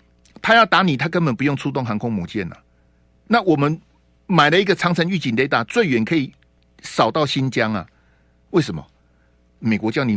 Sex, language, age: male, Chinese, 50-69